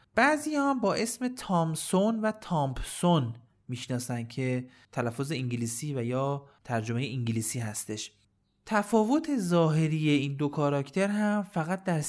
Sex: male